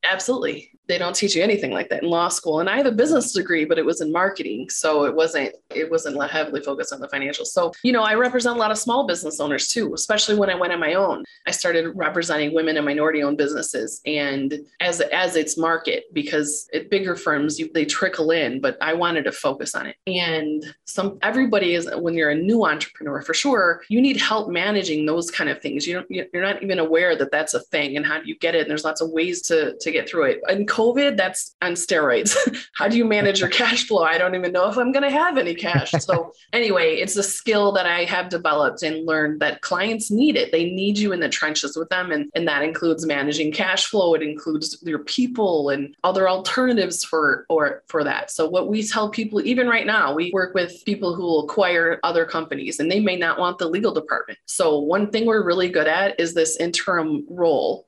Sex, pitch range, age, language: female, 160-215 Hz, 20-39, English